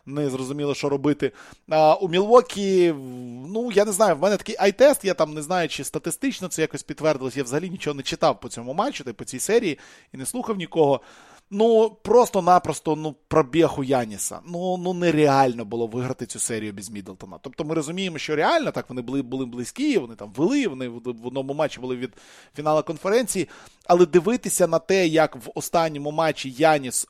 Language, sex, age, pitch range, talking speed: Russian, male, 20-39, 130-170 Hz, 185 wpm